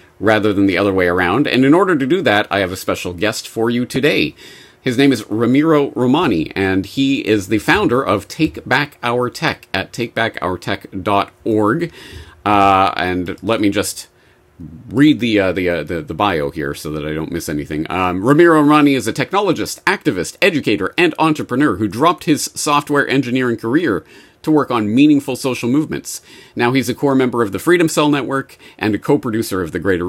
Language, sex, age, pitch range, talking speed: English, male, 40-59, 95-140 Hz, 185 wpm